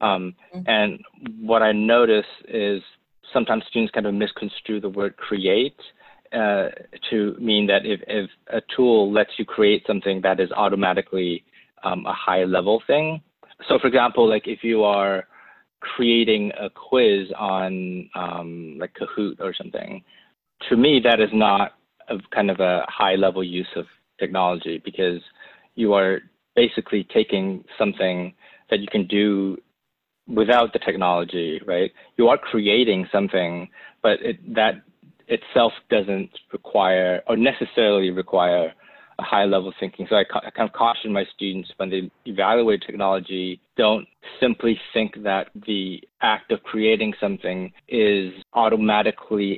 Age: 30-49